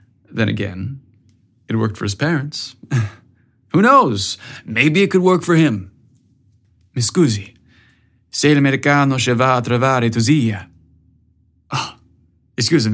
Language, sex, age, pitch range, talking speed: English, male, 30-49, 115-140 Hz, 115 wpm